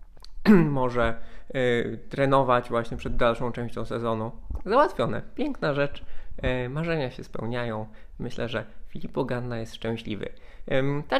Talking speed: 105 wpm